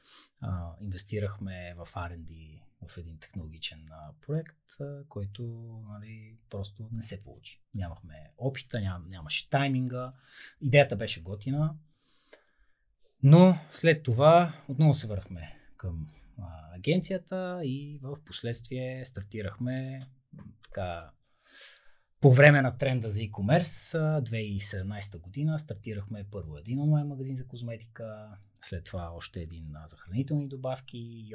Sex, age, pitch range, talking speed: male, 20-39, 95-140 Hz, 115 wpm